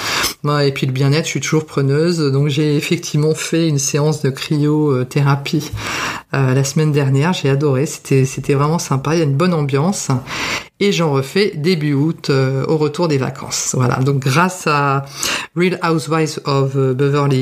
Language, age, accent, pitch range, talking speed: French, 50-69, French, 140-165 Hz, 170 wpm